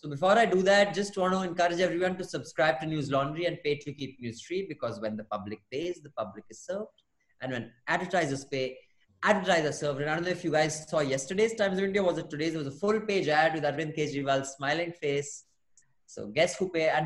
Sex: male